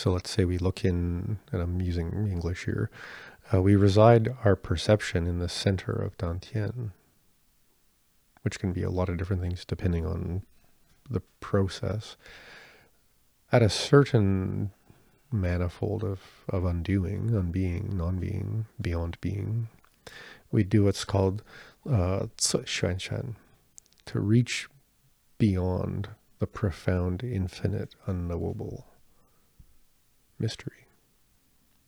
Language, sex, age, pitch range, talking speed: English, male, 40-59, 90-110 Hz, 105 wpm